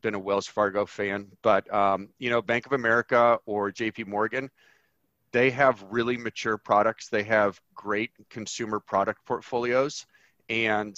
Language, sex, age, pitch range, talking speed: English, male, 40-59, 105-125 Hz, 150 wpm